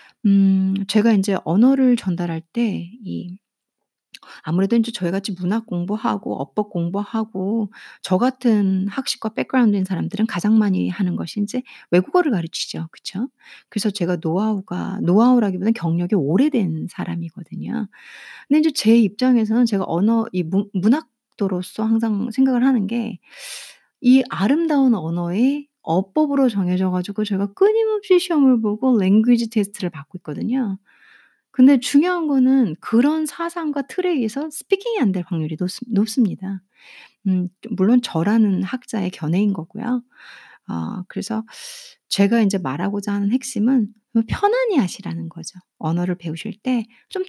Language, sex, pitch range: Korean, female, 185-255 Hz